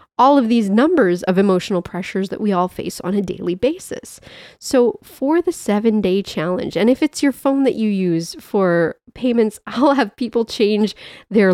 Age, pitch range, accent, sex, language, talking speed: 30-49, 190-245 Hz, American, female, English, 185 wpm